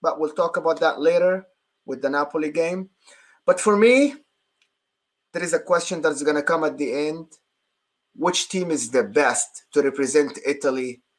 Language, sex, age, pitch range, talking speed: English, male, 30-49, 140-195 Hz, 170 wpm